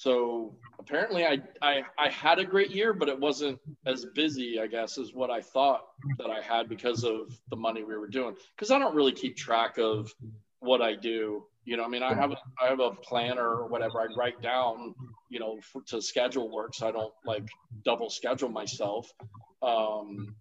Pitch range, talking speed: 115-140 Hz, 205 wpm